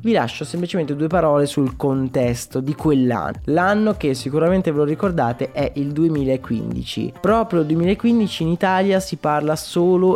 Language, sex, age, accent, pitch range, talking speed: Italian, male, 20-39, native, 130-180 Hz, 155 wpm